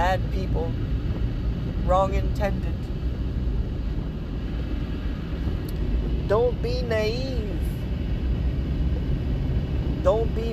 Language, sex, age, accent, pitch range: English, male, 30-49, American, 75-85 Hz